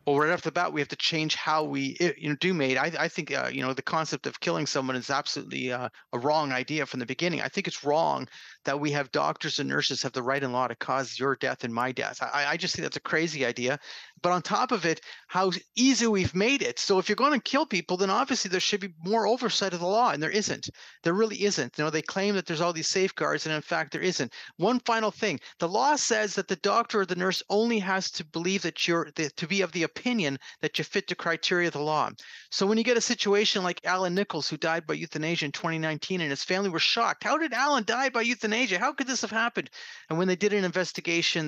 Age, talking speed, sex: 40-59, 260 wpm, male